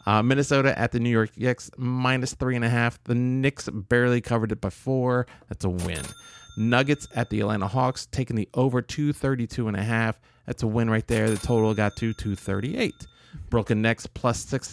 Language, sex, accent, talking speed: English, male, American, 205 wpm